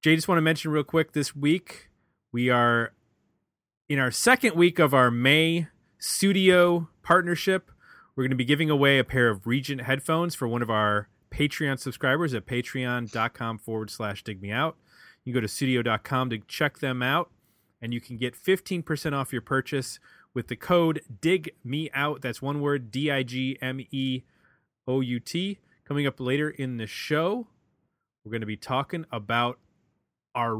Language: English